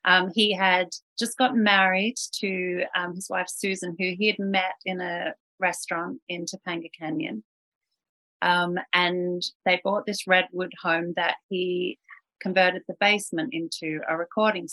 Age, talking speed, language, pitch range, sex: 30-49, 145 wpm, English, 165-195 Hz, female